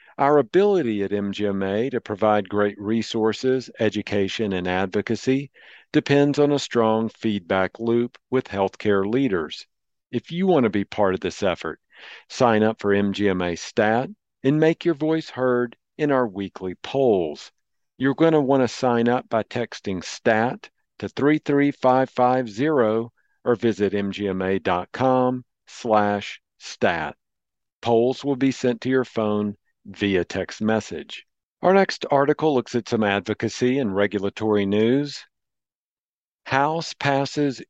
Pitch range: 105-135 Hz